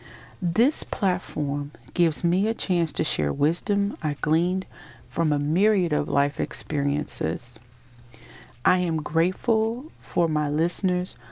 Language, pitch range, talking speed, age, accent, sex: English, 145-190 Hz, 120 wpm, 50-69, American, female